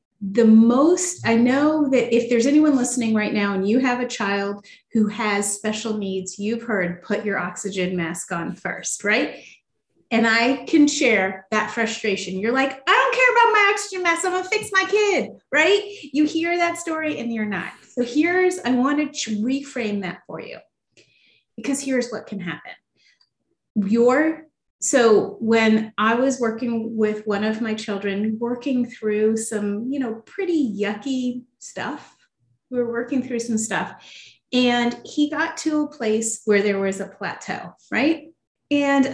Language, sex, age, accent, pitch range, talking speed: English, female, 30-49, American, 210-275 Hz, 170 wpm